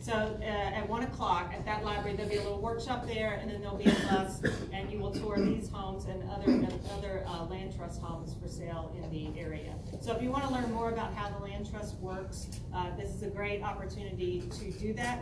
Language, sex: English, female